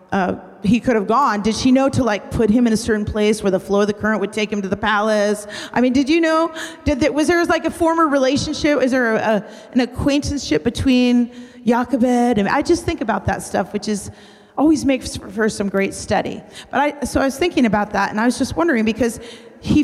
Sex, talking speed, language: female, 240 wpm, English